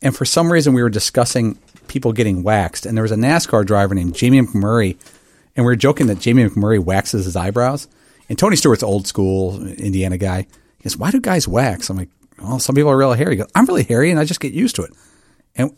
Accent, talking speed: American, 240 wpm